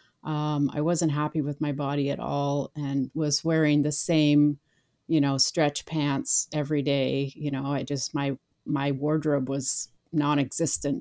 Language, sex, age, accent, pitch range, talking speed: English, female, 30-49, American, 145-165 Hz, 160 wpm